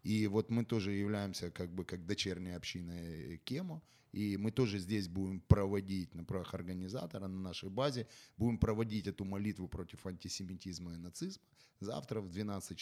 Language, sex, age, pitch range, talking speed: Ukrainian, male, 30-49, 95-115 Hz, 160 wpm